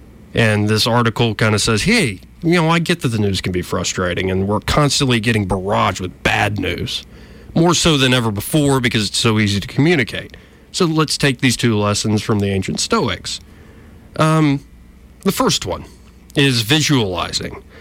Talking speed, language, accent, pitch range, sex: 175 wpm, English, American, 105-140 Hz, male